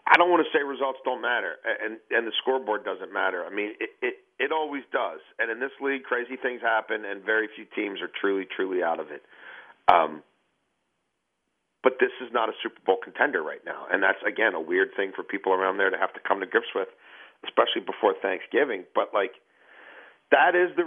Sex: male